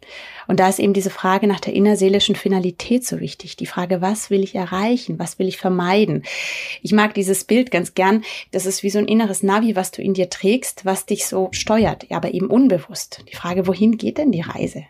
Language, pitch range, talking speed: German, 190-220 Hz, 220 wpm